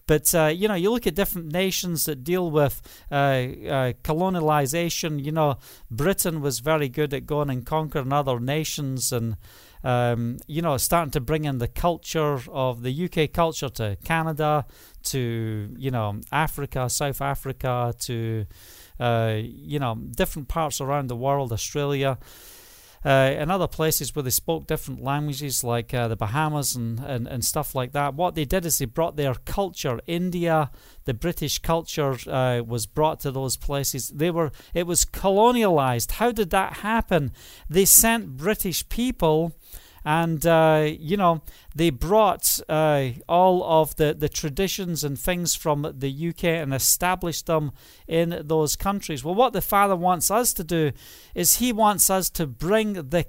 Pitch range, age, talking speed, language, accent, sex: 135-175 Hz, 40-59, 165 wpm, English, British, male